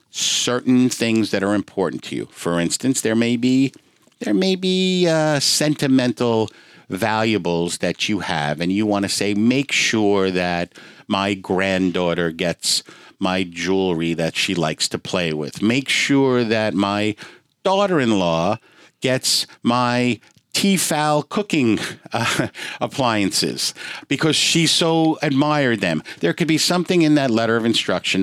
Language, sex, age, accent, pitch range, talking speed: English, male, 50-69, American, 95-140 Hz, 140 wpm